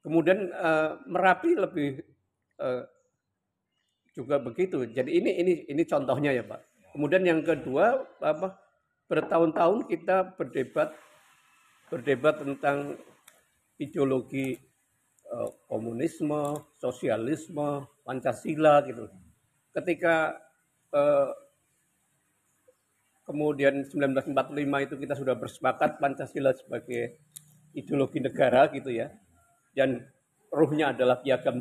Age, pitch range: 50-69, 130-165 Hz